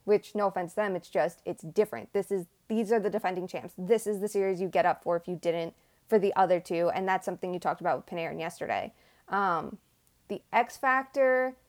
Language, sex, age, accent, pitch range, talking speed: English, female, 20-39, American, 185-220 Hz, 220 wpm